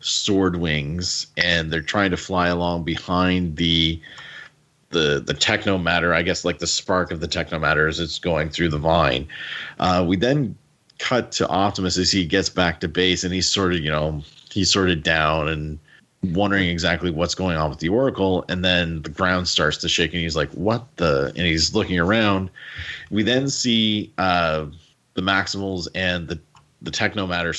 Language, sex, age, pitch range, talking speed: English, male, 30-49, 80-95 Hz, 190 wpm